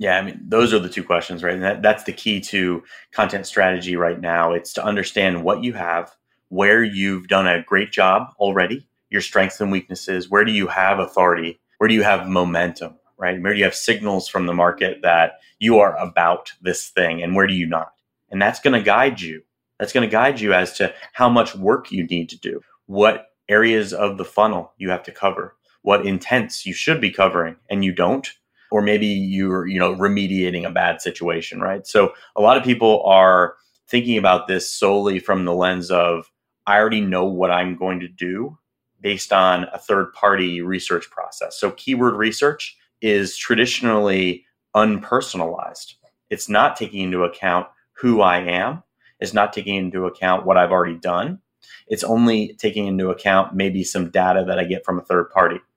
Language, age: English, 30-49